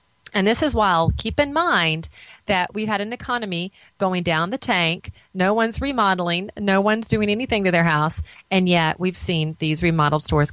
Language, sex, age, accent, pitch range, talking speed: English, female, 30-49, American, 150-195 Hz, 190 wpm